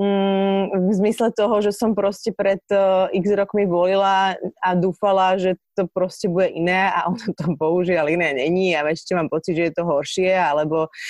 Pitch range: 180-205 Hz